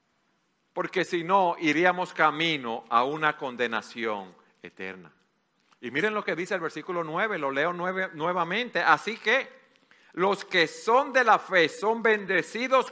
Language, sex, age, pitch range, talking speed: Spanish, male, 50-69, 135-195 Hz, 140 wpm